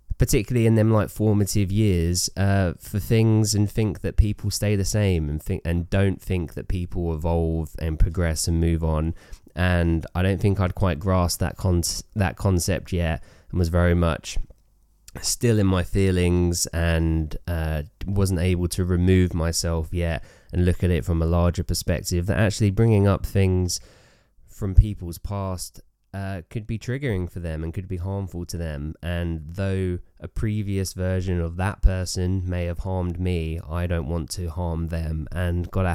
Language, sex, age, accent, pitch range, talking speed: English, male, 20-39, British, 85-100 Hz, 175 wpm